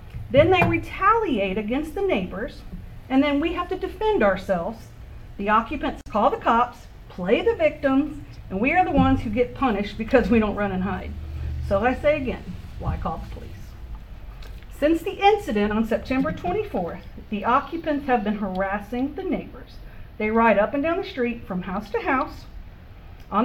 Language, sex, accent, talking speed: English, female, American, 175 wpm